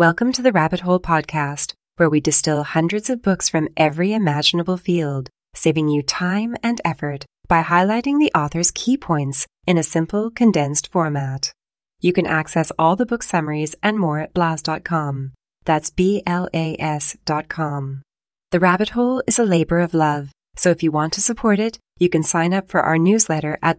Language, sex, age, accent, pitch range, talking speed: English, female, 30-49, American, 155-185 Hz, 180 wpm